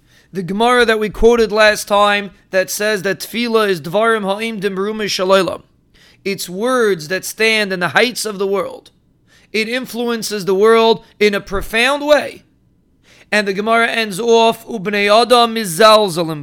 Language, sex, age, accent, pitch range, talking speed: English, male, 30-49, American, 195-230 Hz, 140 wpm